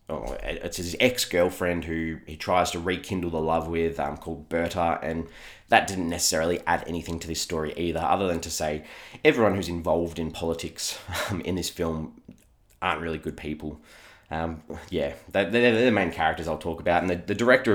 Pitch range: 80-100 Hz